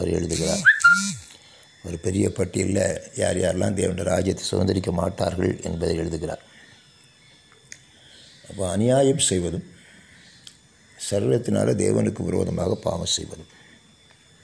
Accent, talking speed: native, 85 wpm